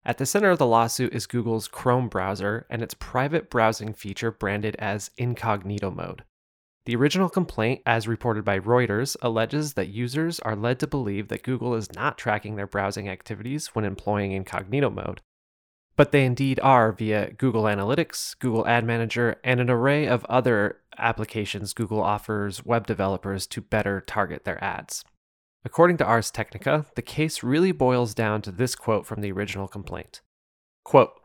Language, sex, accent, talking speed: English, male, American, 165 wpm